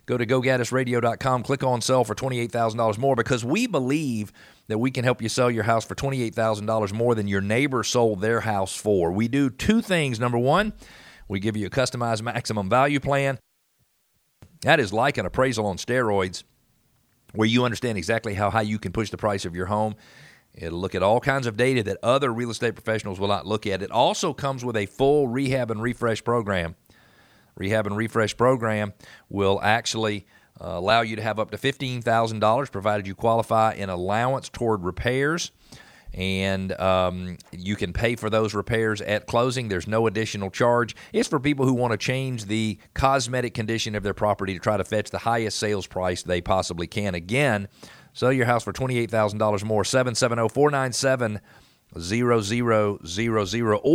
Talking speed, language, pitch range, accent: 175 wpm, English, 105-125 Hz, American